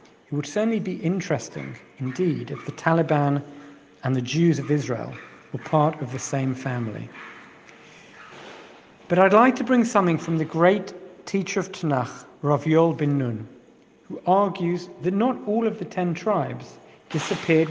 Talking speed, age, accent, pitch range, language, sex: 155 wpm, 50-69, British, 150-215 Hz, English, male